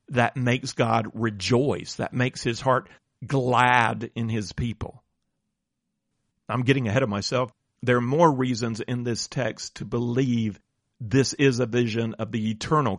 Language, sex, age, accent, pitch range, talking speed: English, male, 40-59, American, 110-135 Hz, 150 wpm